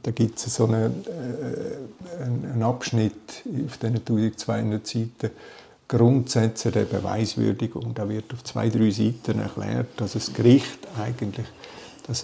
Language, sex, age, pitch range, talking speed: German, male, 50-69, 105-120 Hz, 135 wpm